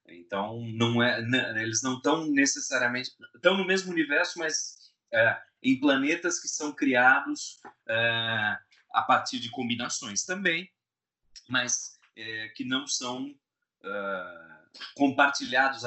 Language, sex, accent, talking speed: Portuguese, male, Brazilian, 95 wpm